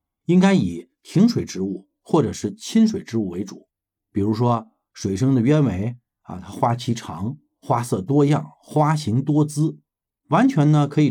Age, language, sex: 50-69, Chinese, male